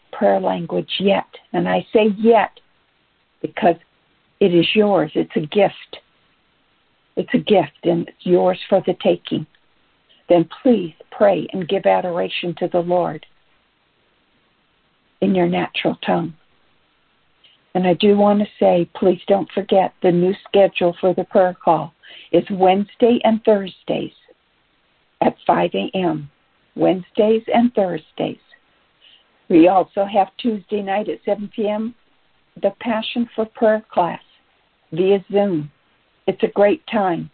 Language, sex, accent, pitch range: English, female, American, 175-215 Hz